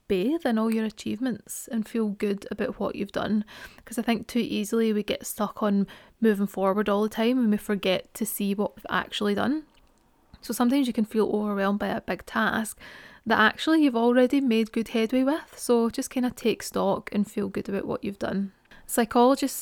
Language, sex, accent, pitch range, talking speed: English, female, British, 205-240 Hz, 205 wpm